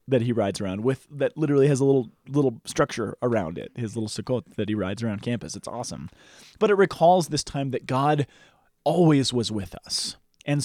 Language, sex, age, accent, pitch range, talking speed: English, male, 20-39, American, 115-145 Hz, 205 wpm